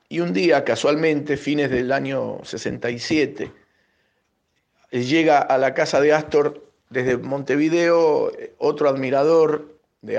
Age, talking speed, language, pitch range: 50-69, 110 wpm, Spanish, 130-170 Hz